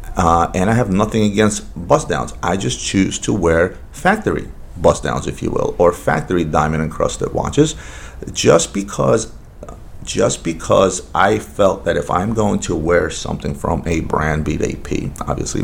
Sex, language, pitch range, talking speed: male, English, 80-105 Hz, 160 wpm